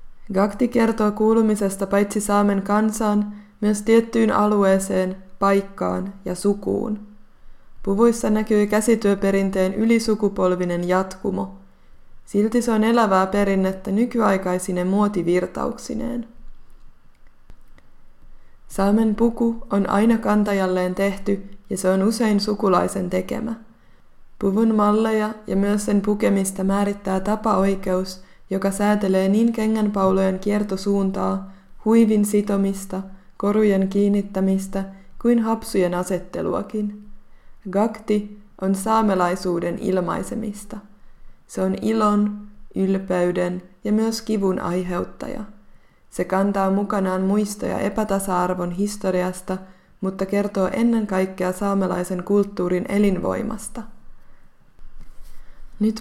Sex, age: female, 20-39